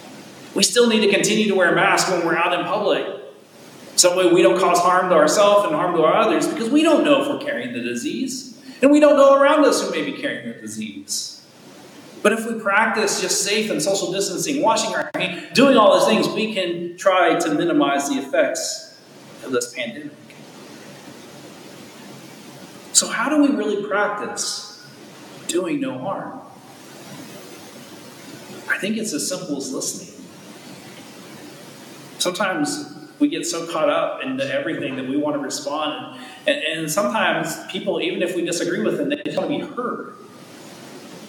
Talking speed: 175 wpm